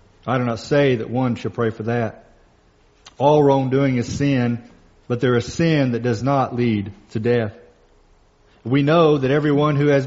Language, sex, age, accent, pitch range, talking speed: English, male, 40-59, American, 110-135 Hz, 180 wpm